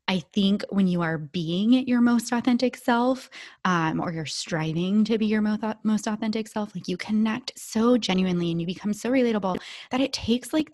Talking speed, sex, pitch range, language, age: 205 wpm, female, 175-230 Hz, English, 20-39